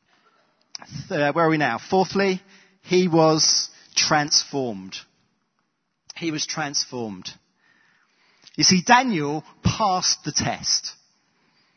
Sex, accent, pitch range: male, British, 130-195 Hz